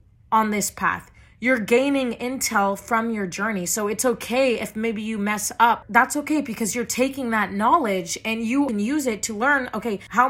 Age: 20-39